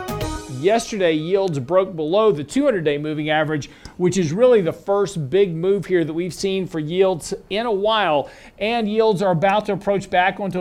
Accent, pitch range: American, 150-185 Hz